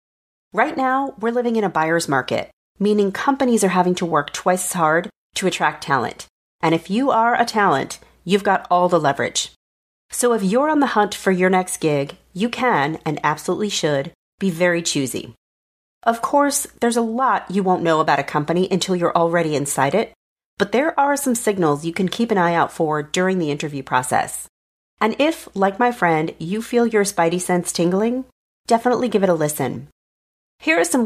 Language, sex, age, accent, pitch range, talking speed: English, female, 40-59, American, 160-225 Hz, 195 wpm